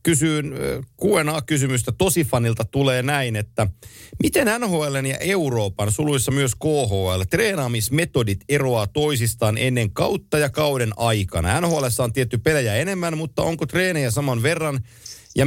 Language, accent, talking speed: Finnish, native, 125 wpm